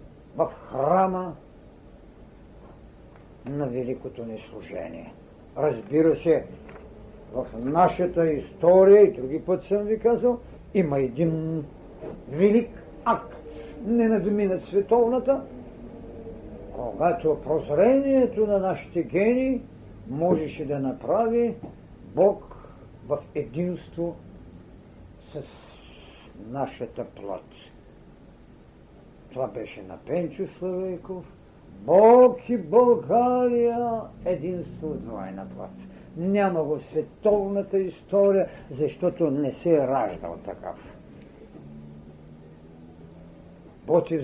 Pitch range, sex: 145-215 Hz, male